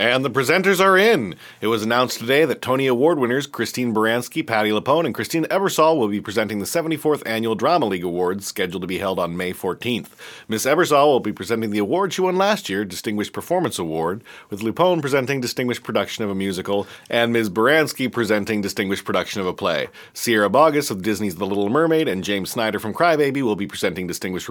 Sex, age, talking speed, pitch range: male, 40-59, 205 wpm, 105-135 Hz